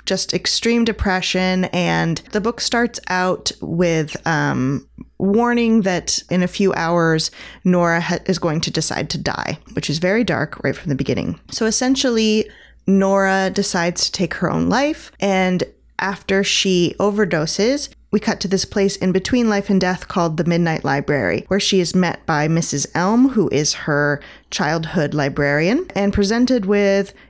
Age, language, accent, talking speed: 20-39, English, American, 160 wpm